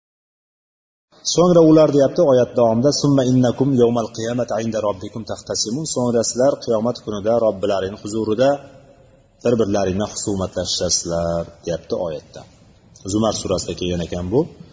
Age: 30-49